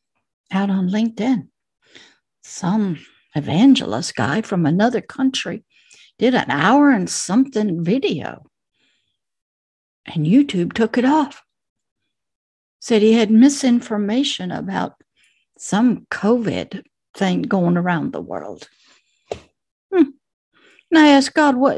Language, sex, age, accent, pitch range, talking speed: English, female, 60-79, American, 205-265 Hz, 105 wpm